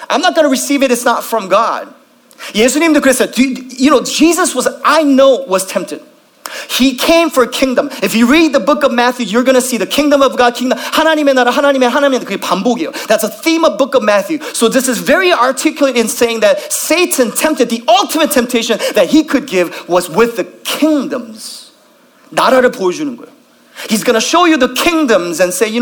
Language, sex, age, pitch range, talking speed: English, male, 30-49, 230-290 Hz, 205 wpm